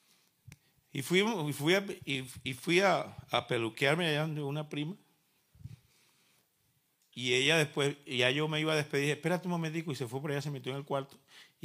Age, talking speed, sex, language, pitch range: 40-59, 200 wpm, male, Spanish, 125-165 Hz